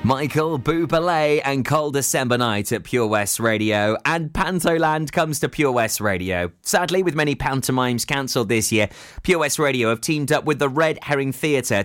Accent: British